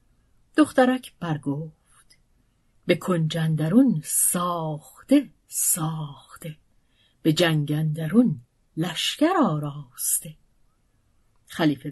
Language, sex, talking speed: Persian, female, 55 wpm